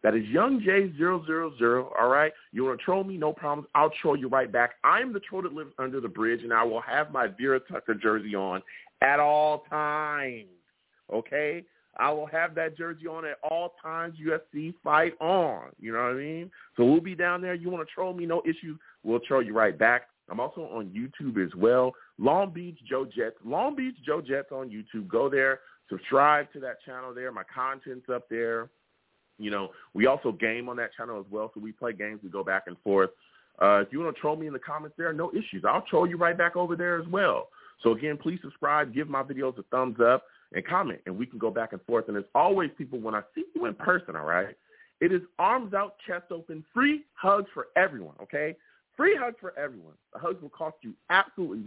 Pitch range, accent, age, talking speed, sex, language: 120-170 Hz, American, 40-59, 230 wpm, male, English